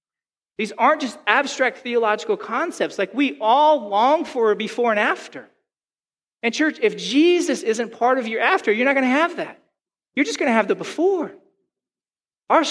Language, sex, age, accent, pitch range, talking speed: English, male, 40-59, American, 215-305 Hz, 180 wpm